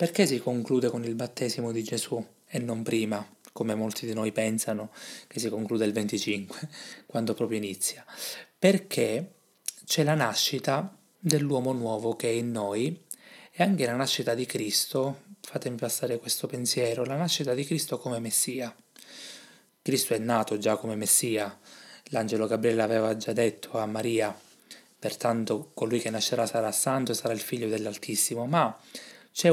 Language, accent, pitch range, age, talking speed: Italian, native, 110-135 Hz, 20-39, 155 wpm